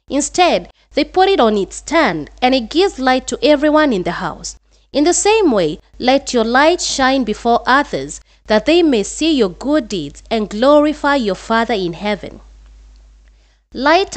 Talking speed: 170 wpm